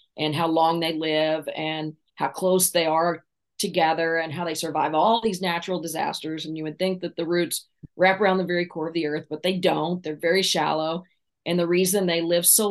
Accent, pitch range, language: American, 160-185 Hz, English